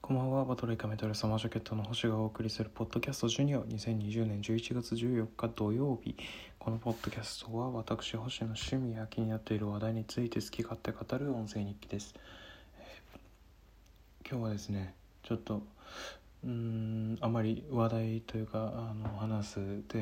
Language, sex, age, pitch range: Japanese, male, 20-39, 100-115 Hz